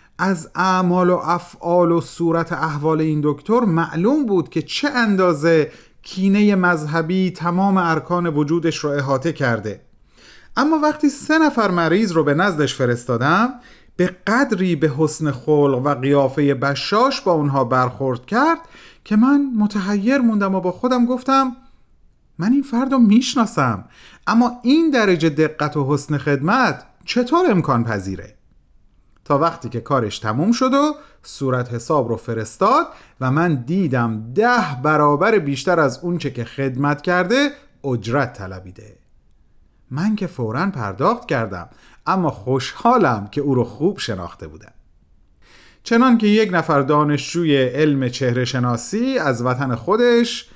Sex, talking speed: male, 135 wpm